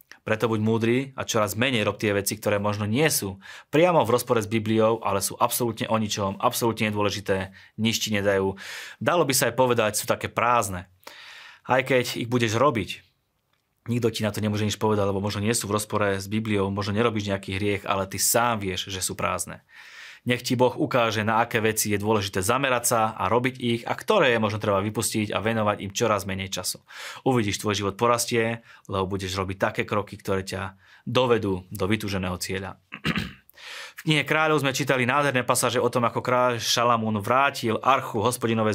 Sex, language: male, Slovak